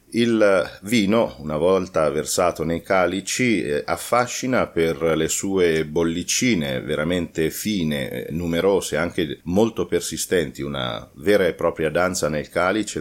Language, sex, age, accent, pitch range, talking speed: Italian, male, 40-59, native, 75-90 Hz, 115 wpm